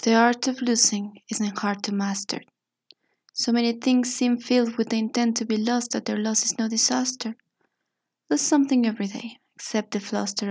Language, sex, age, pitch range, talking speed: Spanish, female, 20-39, 210-240 Hz, 185 wpm